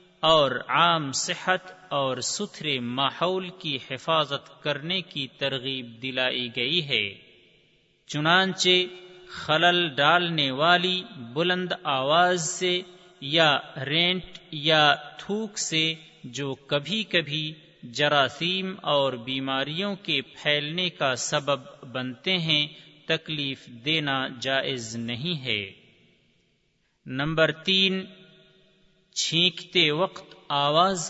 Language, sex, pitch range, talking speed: Urdu, male, 145-180 Hz, 95 wpm